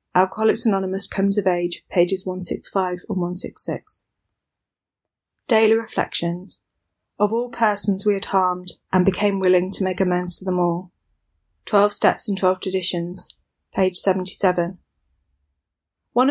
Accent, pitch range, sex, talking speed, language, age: British, 185-225 Hz, female, 125 wpm, English, 30-49